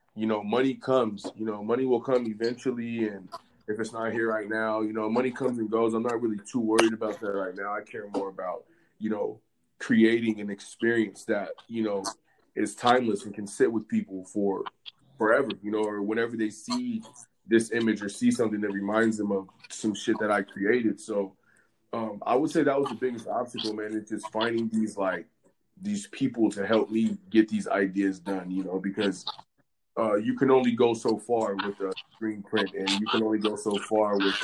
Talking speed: 210 wpm